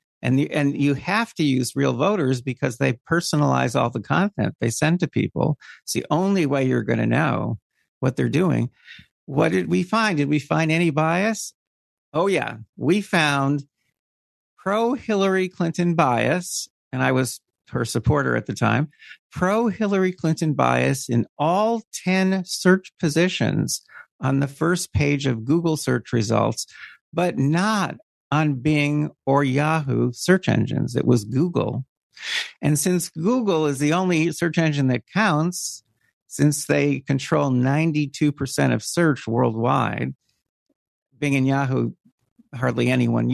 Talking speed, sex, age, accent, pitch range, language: 145 wpm, male, 50-69, American, 130-175 Hz, English